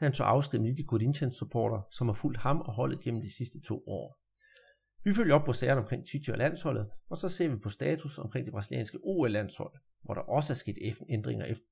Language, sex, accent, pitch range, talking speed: Danish, male, native, 110-150 Hz, 220 wpm